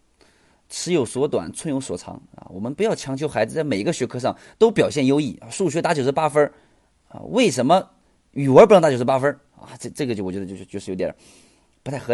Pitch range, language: 105-145 Hz, Chinese